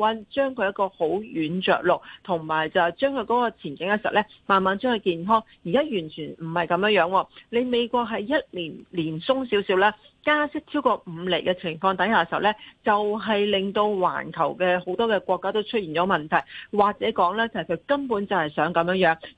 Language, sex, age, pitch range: Chinese, female, 40-59, 175-230 Hz